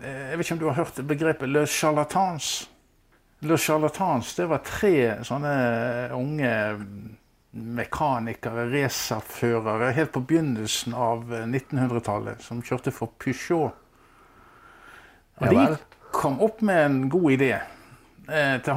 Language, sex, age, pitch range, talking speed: English, male, 50-69, 115-150 Hz, 120 wpm